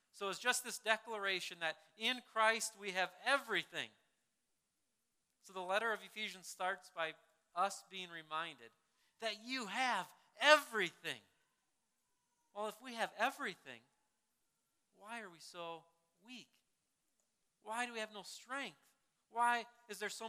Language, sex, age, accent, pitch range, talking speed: English, male, 40-59, American, 185-230 Hz, 135 wpm